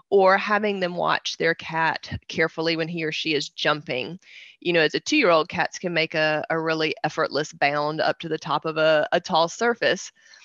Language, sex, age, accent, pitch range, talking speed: English, female, 30-49, American, 155-180 Hz, 200 wpm